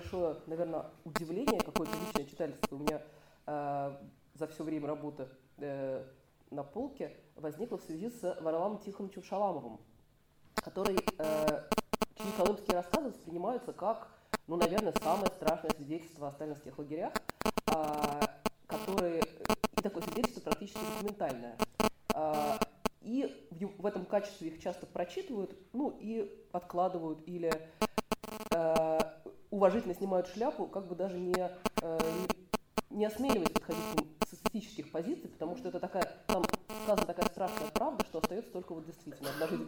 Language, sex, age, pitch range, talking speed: Russian, female, 20-39, 160-215 Hz, 125 wpm